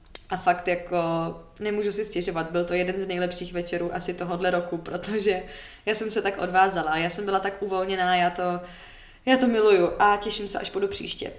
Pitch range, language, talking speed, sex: 175-205 Hz, Czech, 195 wpm, female